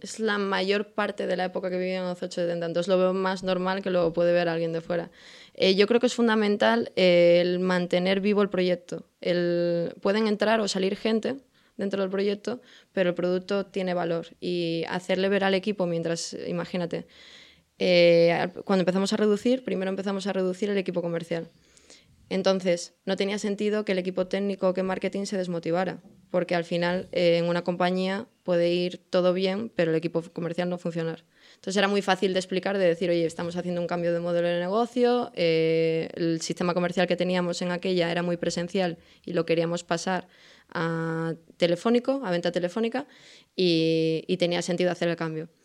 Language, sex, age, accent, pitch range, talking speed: Spanish, female, 20-39, Spanish, 175-195 Hz, 190 wpm